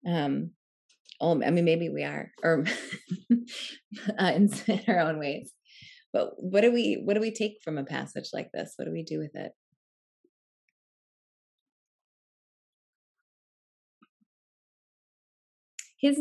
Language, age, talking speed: English, 20-39, 120 wpm